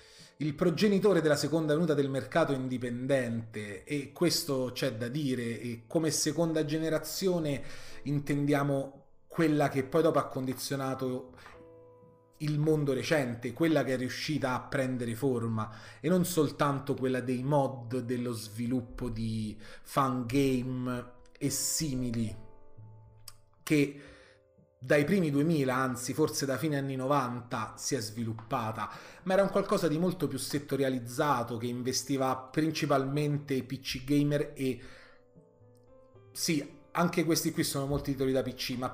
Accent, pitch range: native, 125-150 Hz